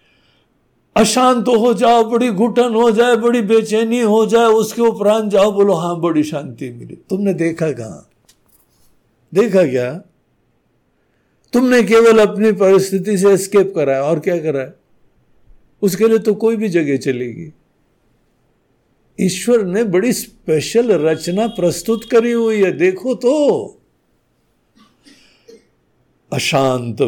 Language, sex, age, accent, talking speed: Hindi, male, 60-79, native, 120 wpm